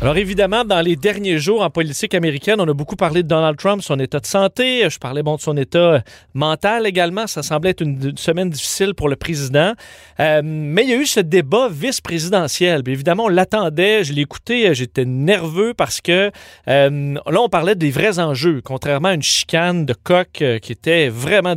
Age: 40-59